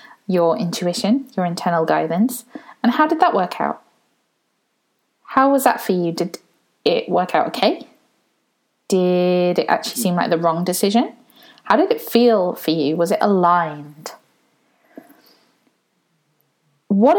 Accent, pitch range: British, 180-240 Hz